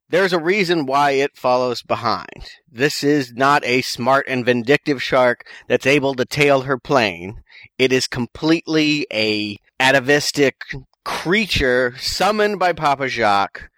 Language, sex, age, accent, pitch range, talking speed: English, male, 30-49, American, 120-160 Hz, 135 wpm